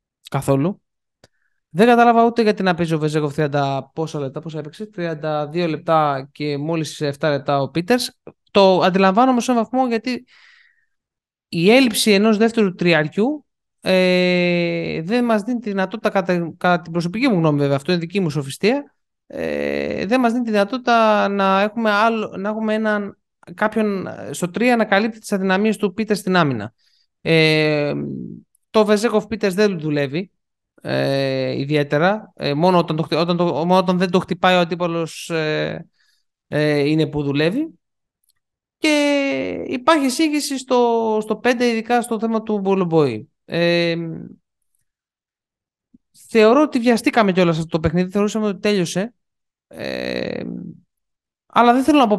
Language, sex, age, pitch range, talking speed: Greek, male, 20-39, 165-230 Hz, 145 wpm